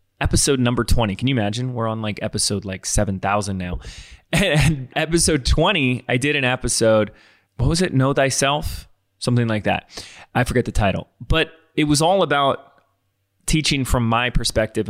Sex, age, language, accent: male, 20-39, English, American